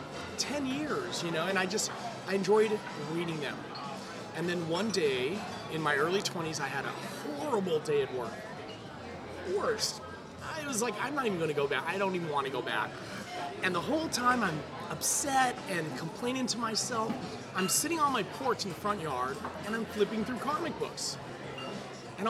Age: 30-49